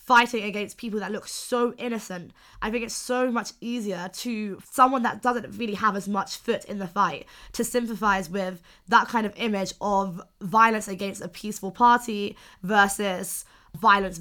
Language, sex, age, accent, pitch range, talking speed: English, female, 20-39, British, 190-225 Hz, 170 wpm